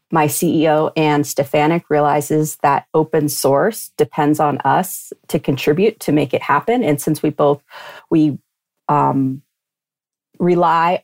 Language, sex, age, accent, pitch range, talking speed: English, female, 40-59, American, 145-175 Hz, 130 wpm